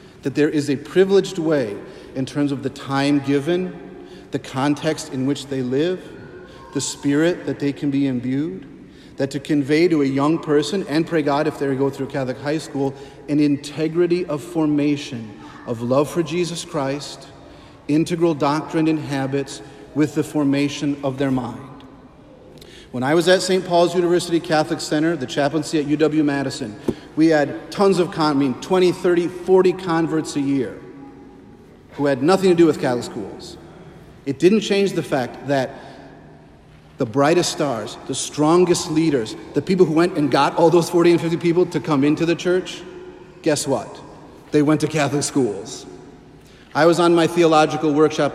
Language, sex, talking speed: English, male, 170 wpm